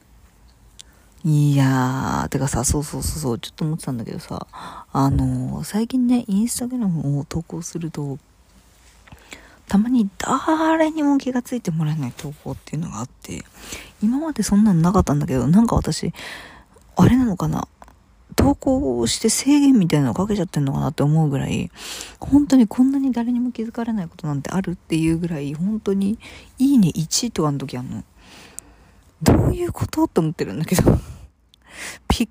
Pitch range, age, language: 140-235 Hz, 40-59, Japanese